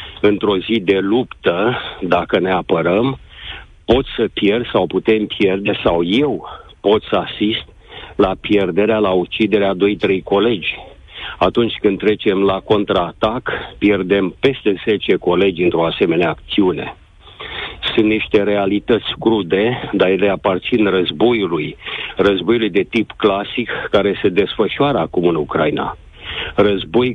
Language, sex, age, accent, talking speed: Romanian, male, 50-69, native, 120 wpm